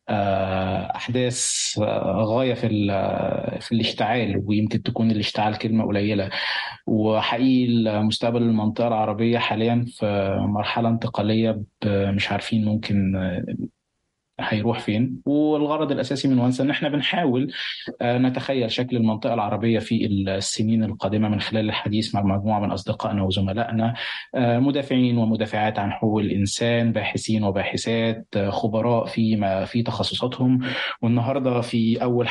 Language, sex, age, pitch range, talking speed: Arabic, male, 20-39, 105-120 Hz, 110 wpm